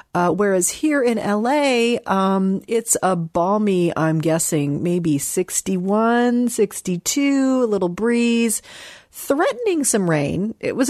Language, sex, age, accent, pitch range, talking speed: English, female, 40-59, American, 160-220 Hz, 120 wpm